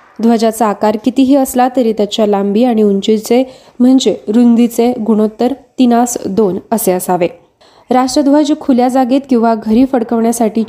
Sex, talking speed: female, 120 wpm